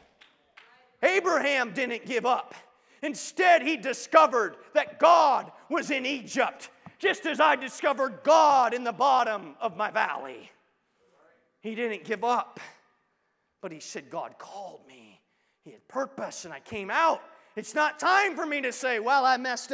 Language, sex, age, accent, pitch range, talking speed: English, male, 40-59, American, 165-260 Hz, 150 wpm